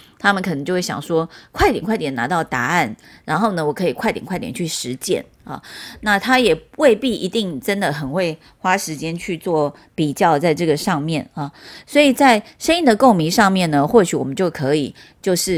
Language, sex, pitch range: Chinese, female, 155-230 Hz